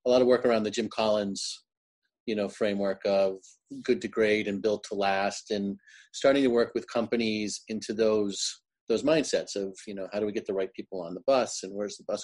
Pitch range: 100-125 Hz